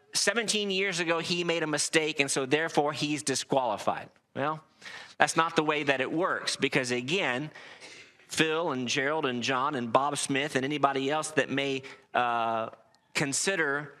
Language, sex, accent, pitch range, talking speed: English, male, American, 135-175 Hz, 160 wpm